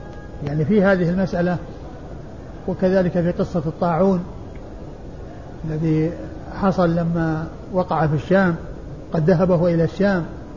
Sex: male